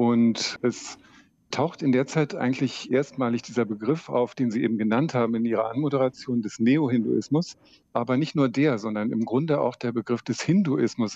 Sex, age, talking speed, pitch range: male, 50-69, 175 wpm, 115-135 Hz